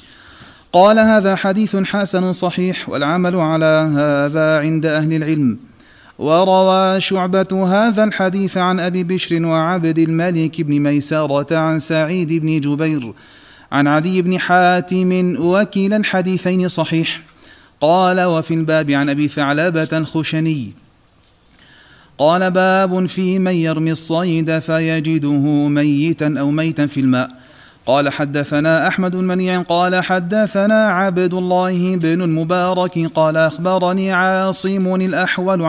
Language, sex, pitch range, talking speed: Arabic, male, 145-185 Hz, 110 wpm